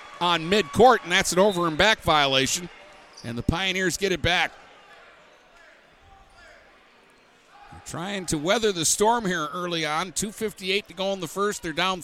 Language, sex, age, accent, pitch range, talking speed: English, male, 50-69, American, 150-185 Hz, 155 wpm